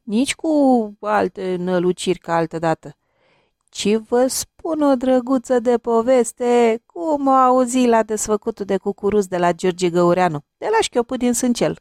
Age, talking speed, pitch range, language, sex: 40-59, 145 wpm, 180-275 Hz, Romanian, female